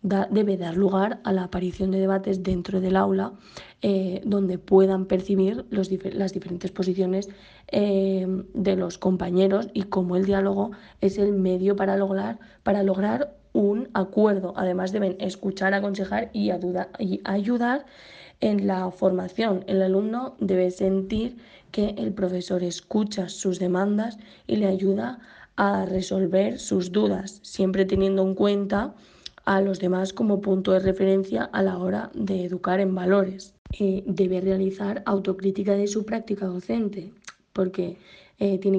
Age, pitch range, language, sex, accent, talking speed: 20-39, 185-200 Hz, Spanish, female, Spanish, 140 wpm